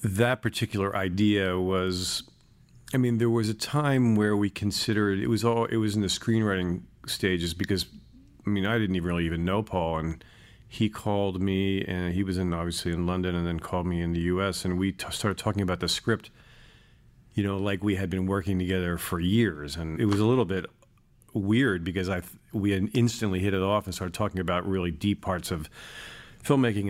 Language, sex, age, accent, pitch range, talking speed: English, male, 40-59, American, 90-105 Hz, 205 wpm